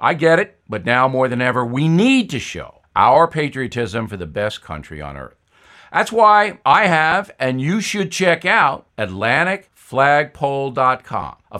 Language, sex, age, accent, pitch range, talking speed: English, male, 50-69, American, 120-175 Hz, 160 wpm